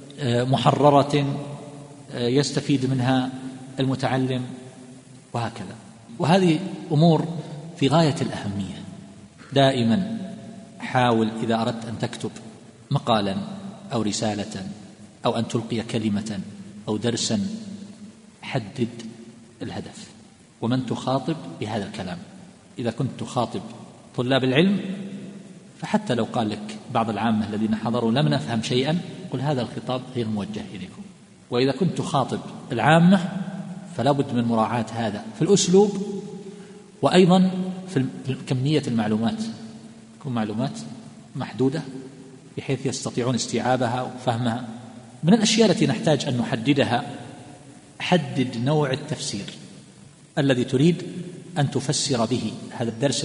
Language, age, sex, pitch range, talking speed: Arabic, 50-69, male, 120-160 Hz, 100 wpm